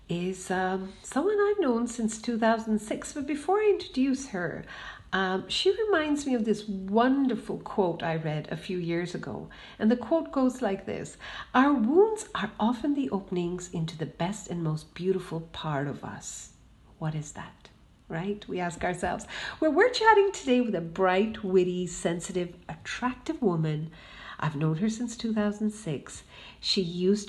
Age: 50-69